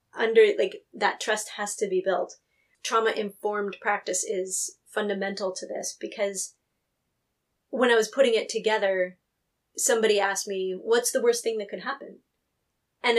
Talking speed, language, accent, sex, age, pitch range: 150 wpm, English, American, female, 30-49, 195-275 Hz